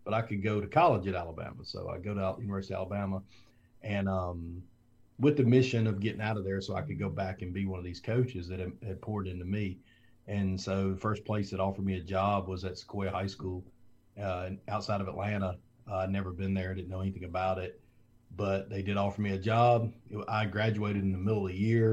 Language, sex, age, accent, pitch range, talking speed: English, male, 40-59, American, 95-110 Hz, 230 wpm